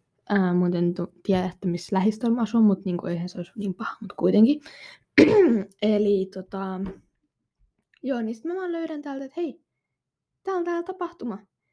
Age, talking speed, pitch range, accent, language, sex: 20-39, 165 wpm, 185-265 Hz, native, Finnish, female